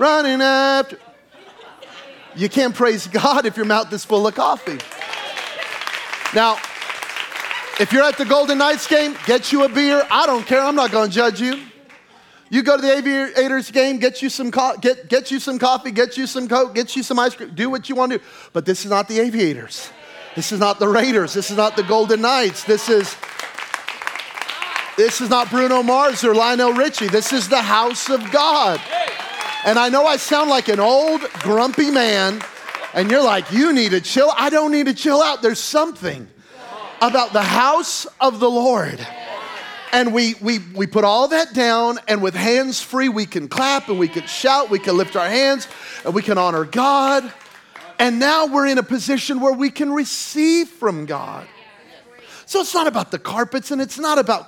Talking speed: 195 wpm